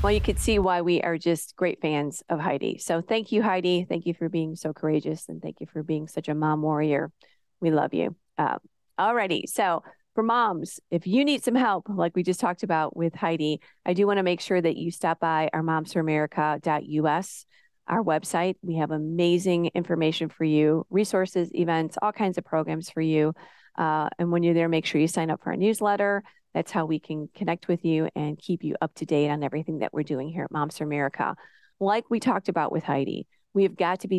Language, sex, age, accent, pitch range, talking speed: English, female, 30-49, American, 155-180 Hz, 225 wpm